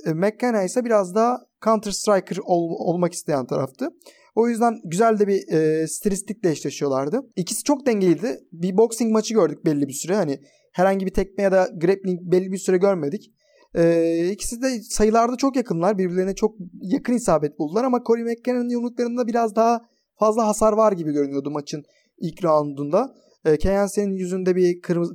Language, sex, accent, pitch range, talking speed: Turkish, male, native, 175-230 Hz, 165 wpm